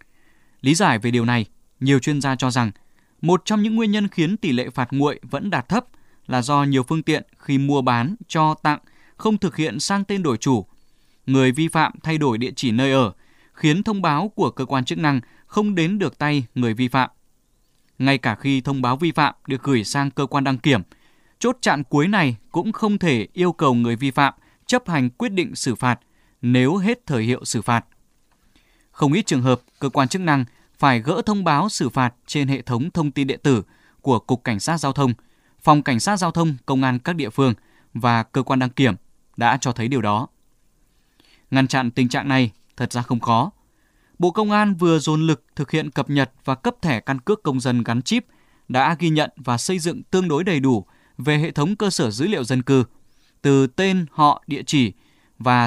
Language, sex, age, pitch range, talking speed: Vietnamese, male, 20-39, 125-160 Hz, 220 wpm